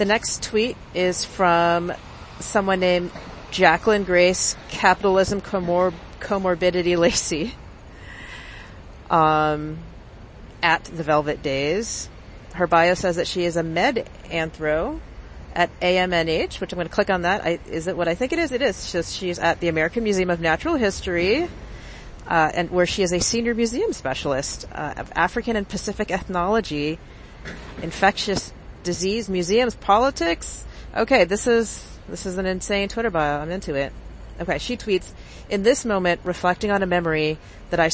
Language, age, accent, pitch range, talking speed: English, 40-59, American, 155-195 Hz, 155 wpm